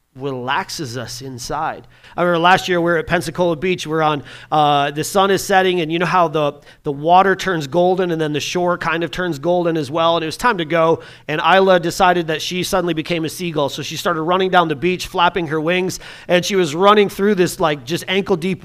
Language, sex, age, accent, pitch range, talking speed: English, male, 30-49, American, 155-205 Hz, 235 wpm